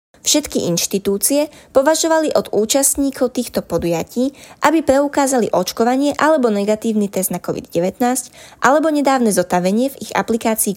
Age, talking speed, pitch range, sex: 20-39, 115 wpm, 195-260 Hz, female